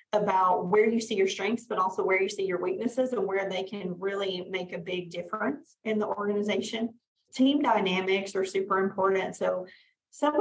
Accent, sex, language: American, female, English